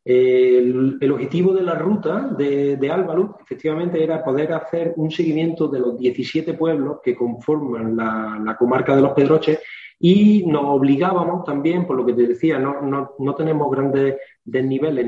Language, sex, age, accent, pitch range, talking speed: Spanish, male, 30-49, Spanish, 135-165 Hz, 165 wpm